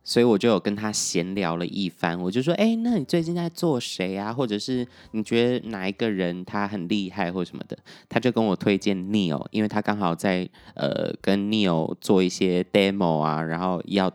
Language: Chinese